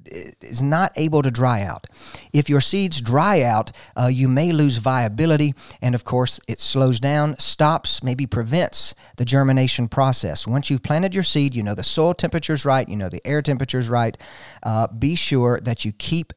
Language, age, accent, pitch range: English, 40-59, American, 120-160 Hz